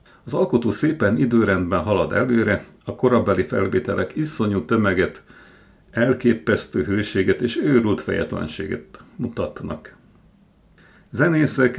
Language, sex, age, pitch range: Hungarian, male, 50-69, 95-120 Hz